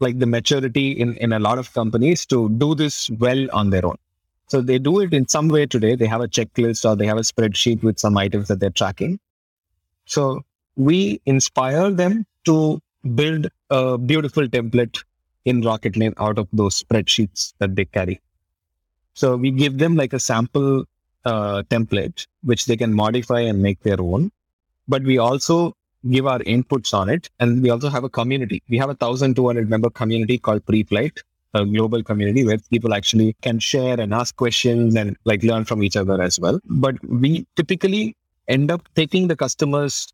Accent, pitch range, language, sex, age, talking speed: Indian, 105-135 Hz, English, male, 20-39, 185 wpm